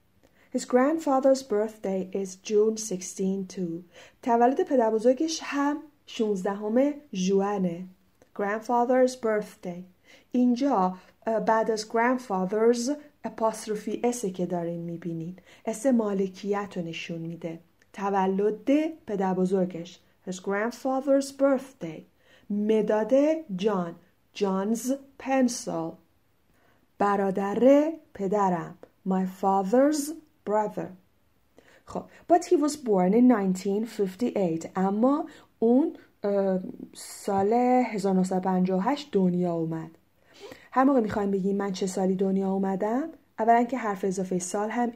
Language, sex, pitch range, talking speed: Persian, female, 185-250 Hz, 90 wpm